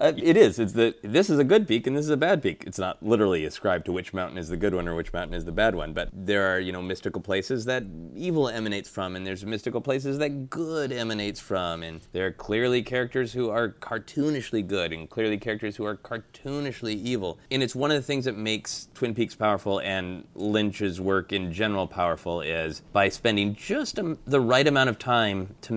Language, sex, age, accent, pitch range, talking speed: English, male, 30-49, American, 95-125 Hz, 225 wpm